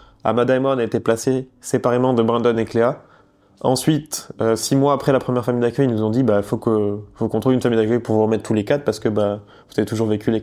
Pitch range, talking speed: 110-130 Hz, 265 wpm